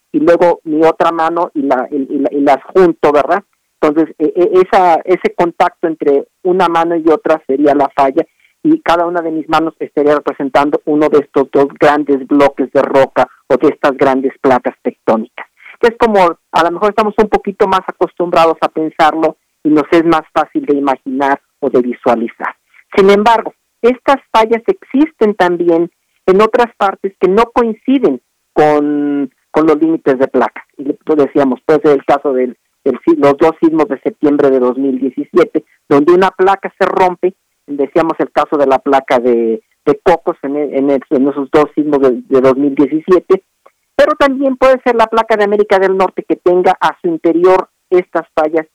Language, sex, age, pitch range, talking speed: Spanish, male, 50-69, 145-185 Hz, 175 wpm